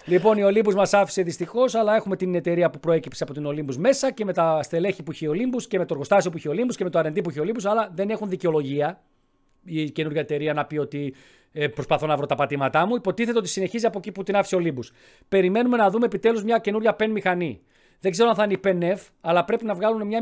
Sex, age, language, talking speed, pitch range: male, 40-59, Greek, 245 wpm, 160-230 Hz